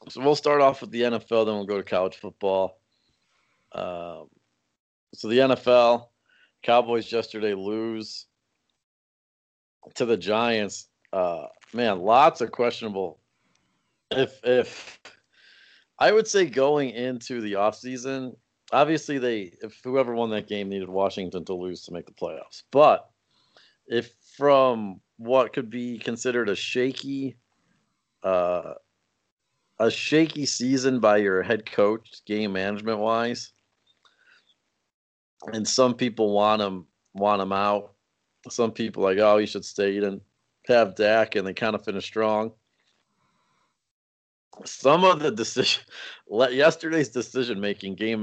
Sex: male